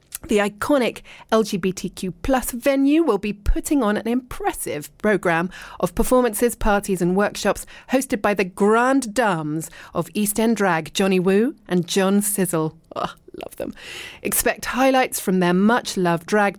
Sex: female